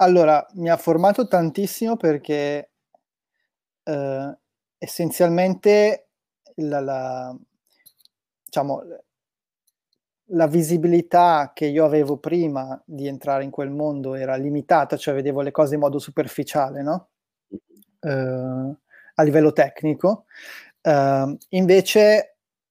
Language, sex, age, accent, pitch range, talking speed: Italian, male, 20-39, native, 140-170 Hz, 100 wpm